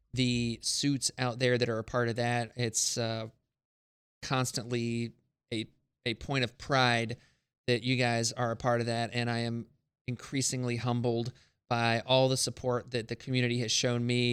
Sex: male